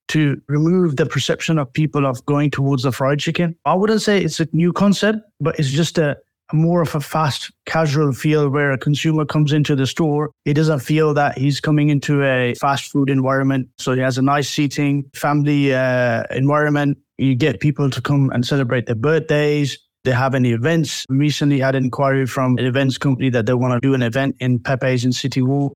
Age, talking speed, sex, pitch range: 20-39, 210 wpm, male, 135-155 Hz